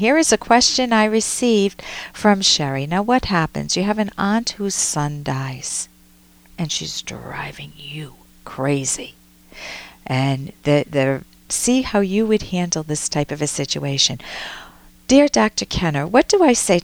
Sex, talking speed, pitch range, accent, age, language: female, 155 wpm, 155-235 Hz, American, 50-69, English